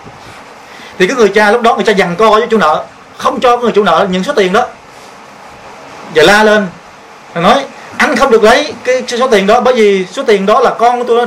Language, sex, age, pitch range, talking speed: Vietnamese, male, 30-49, 185-235 Hz, 240 wpm